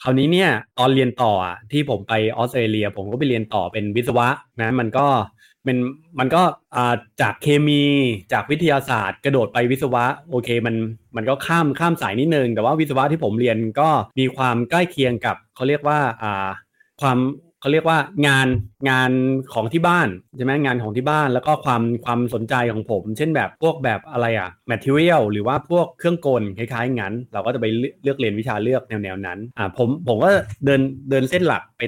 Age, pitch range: 20-39, 115-140 Hz